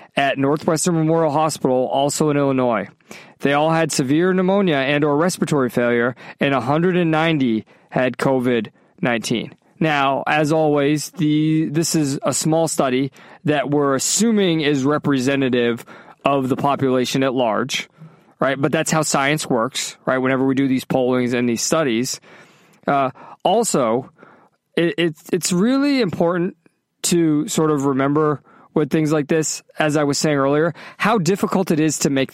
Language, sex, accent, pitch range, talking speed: English, male, American, 135-170 Hz, 150 wpm